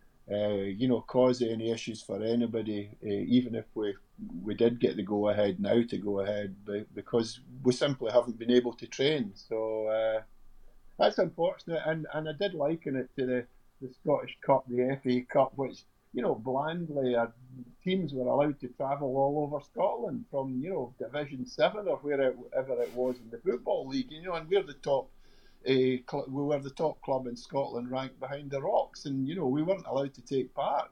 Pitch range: 115-140 Hz